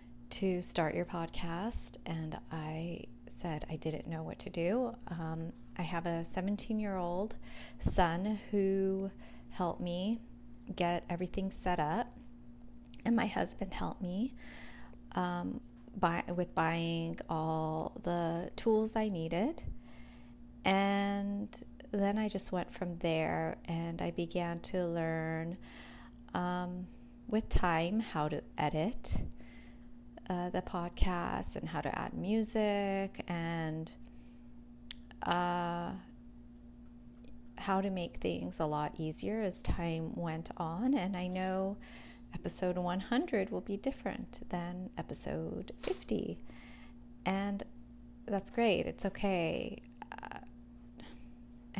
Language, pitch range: English, 120-195 Hz